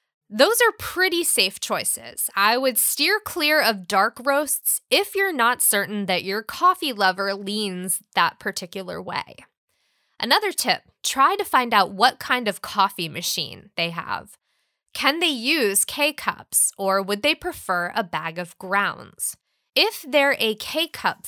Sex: female